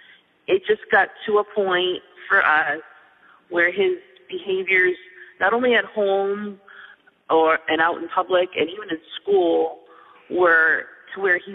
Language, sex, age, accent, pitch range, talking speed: English, female, 30-49, American, 160-230 Hz, 145 wpm